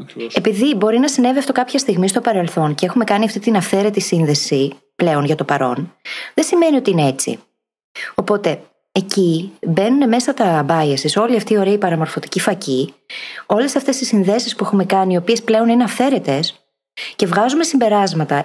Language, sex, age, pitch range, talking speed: Greek, female, 20-39, 165-235 Hz, 170 wpm